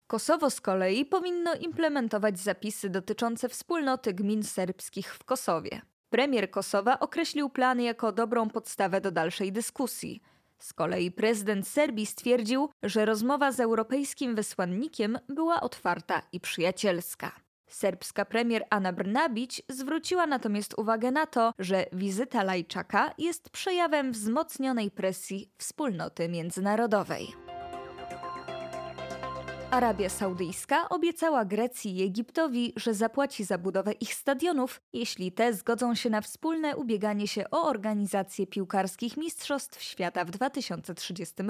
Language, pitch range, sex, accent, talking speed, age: Polish, 195-275 Hz, female, native, 115 wpm, 20-39